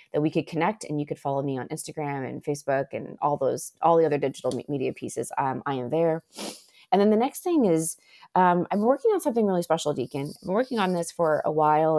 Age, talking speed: 30-49, 240 wpm